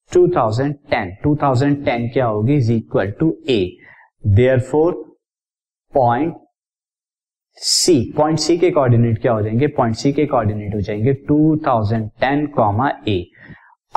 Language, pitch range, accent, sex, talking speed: Hindi, 120-155 Hz, native, male, 95 wpm